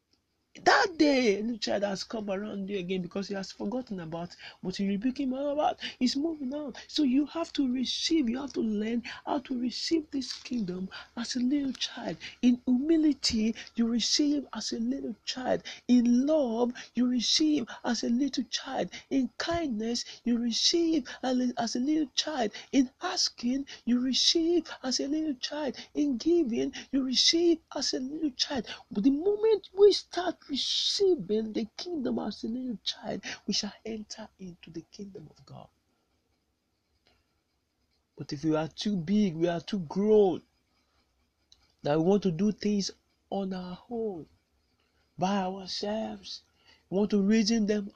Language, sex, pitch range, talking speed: English, male, 180-265 Hz, 160 wpm